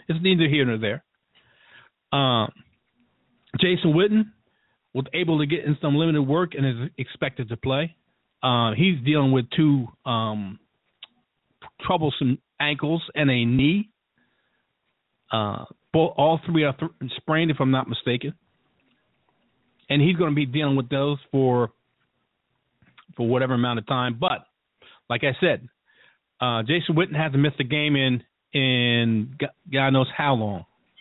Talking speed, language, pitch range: 145 wpm, English, 125-150 Hz